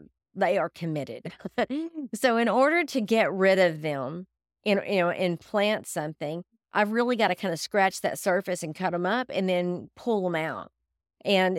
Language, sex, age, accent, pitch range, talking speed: English, female, 40-59, American, 180-235 Hz, 175 wpm